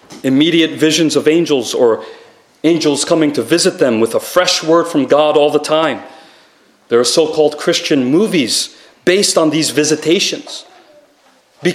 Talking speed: 150 wpm